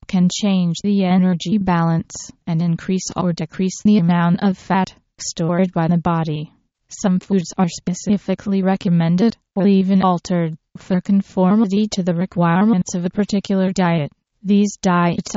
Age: 20-39